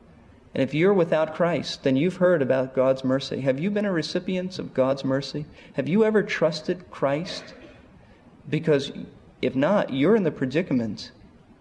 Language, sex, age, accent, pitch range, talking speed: English, male, 40-59, American, 130-165 Hz, 160 wpm